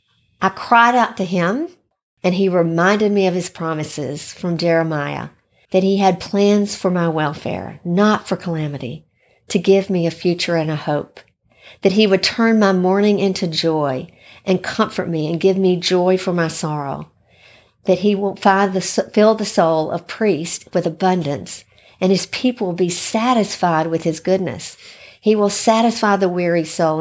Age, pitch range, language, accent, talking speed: 50-69, 165-200 Hz, English, American, 165 wpm